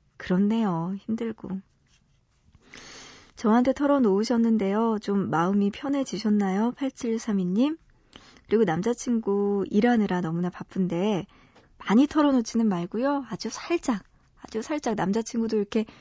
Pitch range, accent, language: 190-245 Hz, native, Korean